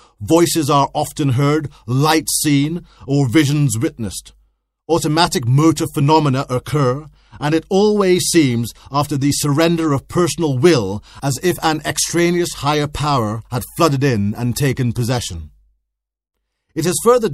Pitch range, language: 125-160 Hz, English